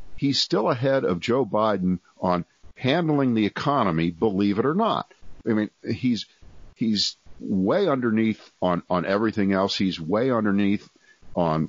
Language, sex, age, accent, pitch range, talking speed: English, male, 50-69, American, 85-110 Hz, 145 wpm